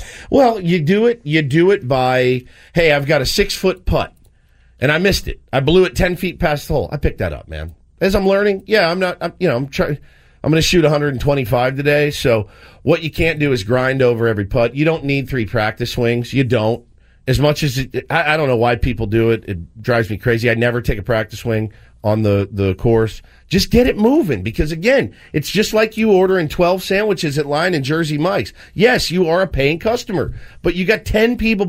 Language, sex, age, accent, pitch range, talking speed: English, male, 40-59, American, 120-180 Hz, 230 wpm